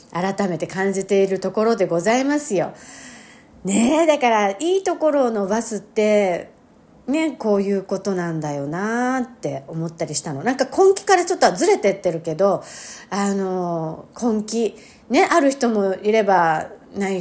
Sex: female